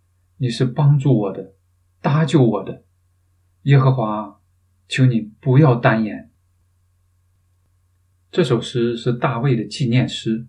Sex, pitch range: male, 90-130 Hz